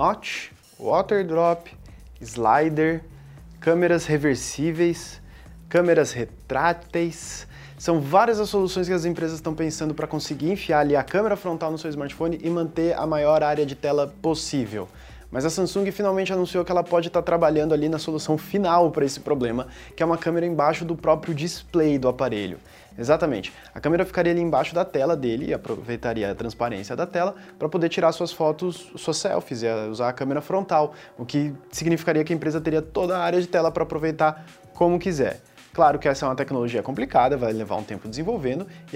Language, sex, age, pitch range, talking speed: Portuguese, male, 20-39, 130-170 Hz, 180 wpm